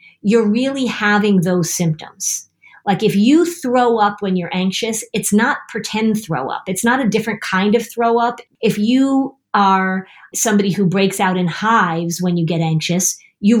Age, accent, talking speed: 40-59, American, 175 wpm